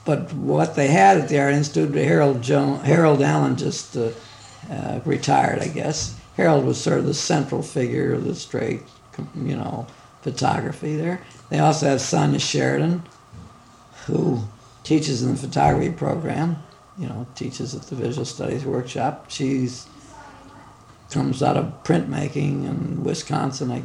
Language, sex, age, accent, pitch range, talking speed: English, male, 60-79, American, 120-150 Hz, 150 wpm